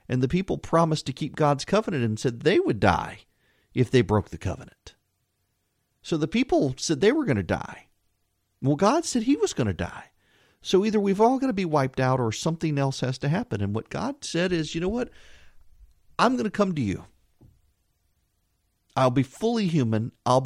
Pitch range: 100-145 Hz